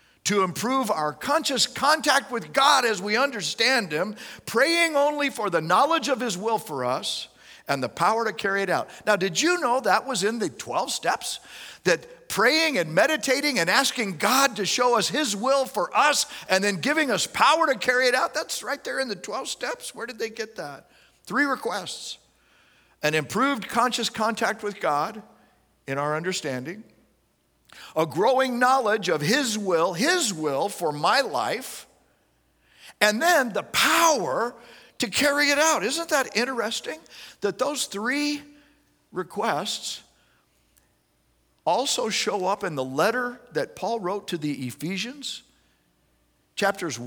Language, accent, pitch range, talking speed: English, American, 175-270 Hz, 155 wpm